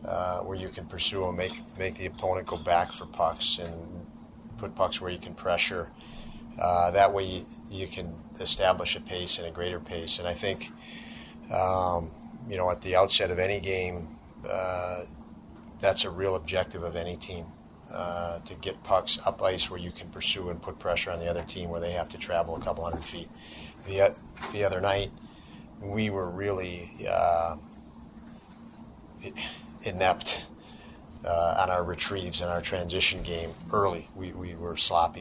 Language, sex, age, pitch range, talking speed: English, male, 40-59, 85-90 Hz, 175 wpm